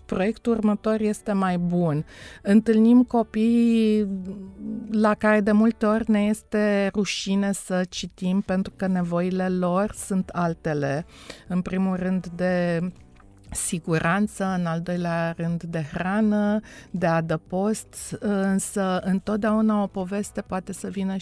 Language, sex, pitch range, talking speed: Romanian, female, 175-210 Hz, 120 wpm